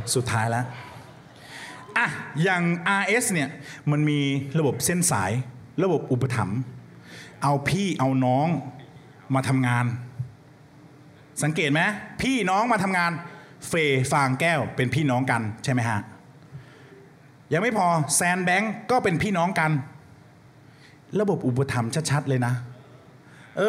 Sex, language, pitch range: male, Thai, 135-195 Hz